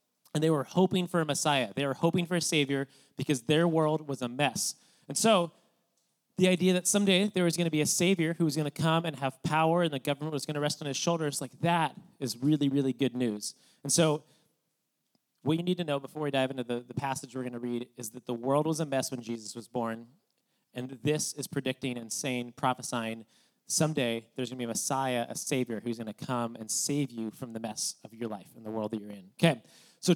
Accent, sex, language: American, male, English